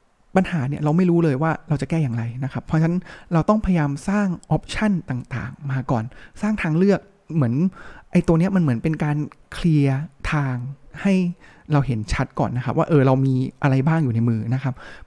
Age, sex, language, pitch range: 20-39, male, Thai, 140-180 Hz